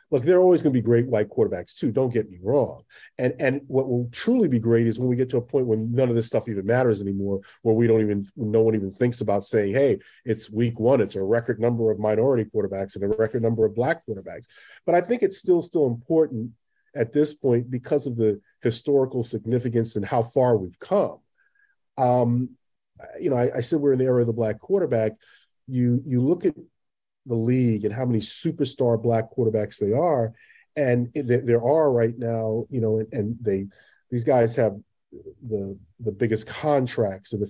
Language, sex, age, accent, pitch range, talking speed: English, male, 40-59, American, 110-130 Hz, 210 wpm